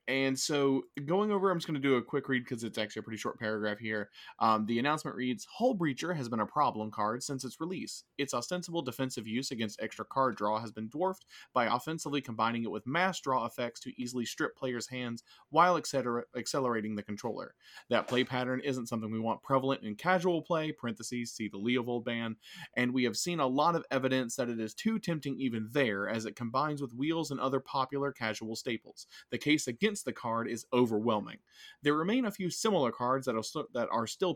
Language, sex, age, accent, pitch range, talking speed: English, male, 30-49, American, 115-145 Hz, 210 wpm